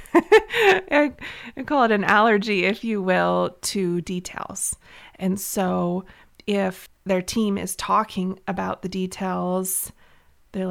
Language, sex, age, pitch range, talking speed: English, female, 20-39, 185-230 Hz, 120 wpm